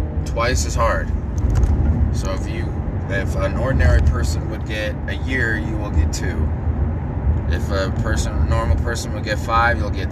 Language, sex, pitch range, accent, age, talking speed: English, male, 80-95 Hz, American, 20-39, 170 wpm